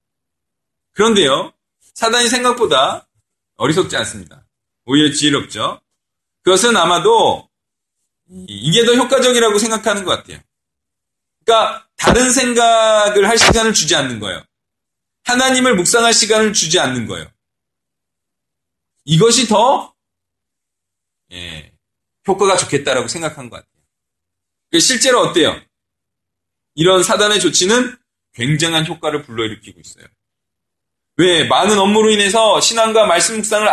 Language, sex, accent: Korean, male, native